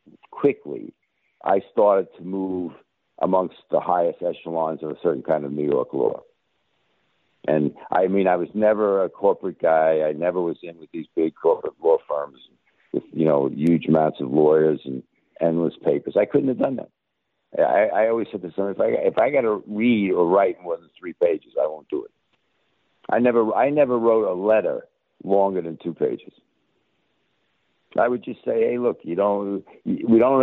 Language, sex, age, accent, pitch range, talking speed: English, male, 60-79, American, 80-120 Hz, 185 wpm